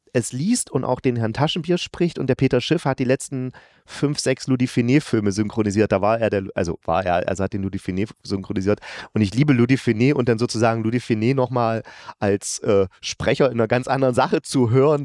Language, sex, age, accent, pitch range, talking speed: German, male, 30-49, German, 105-135 Hz, 205 wpm